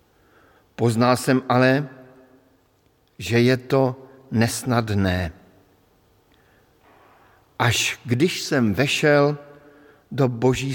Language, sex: Slovak, male